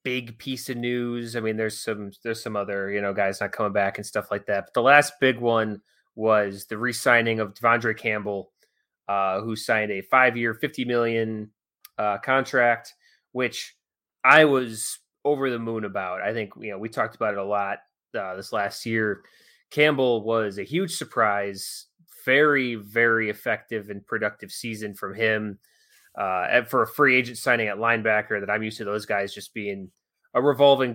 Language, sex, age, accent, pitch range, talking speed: English, male, 20-39, American, 105-125 Hz, 180 wpm